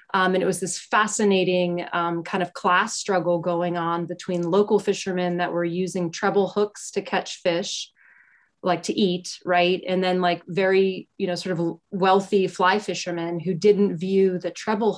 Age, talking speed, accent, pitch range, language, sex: 20-39, 175 wpm, American, 175-195 Hz, English, female